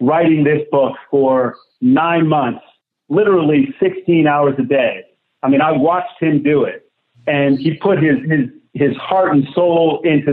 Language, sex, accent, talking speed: English, male, American, 165 wpm